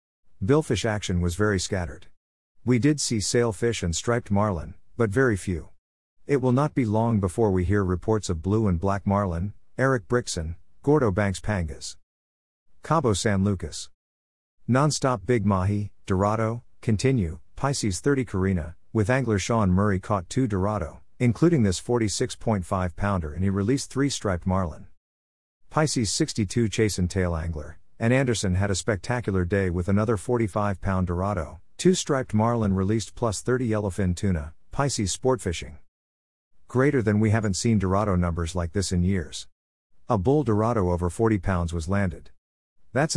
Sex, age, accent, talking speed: male, 50-69, American, 145 wpm